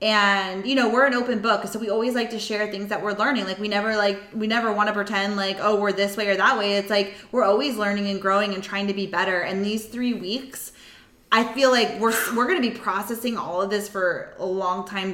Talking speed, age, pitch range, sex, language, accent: 260 wpm, 20-39, 195-230 Hz, female, English, American